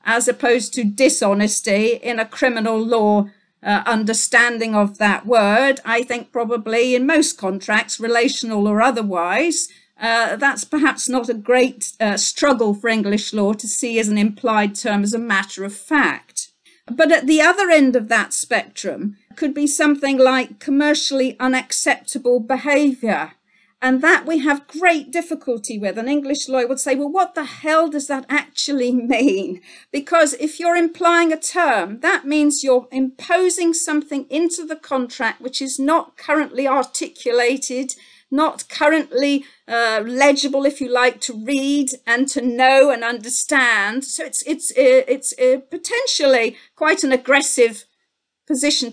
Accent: British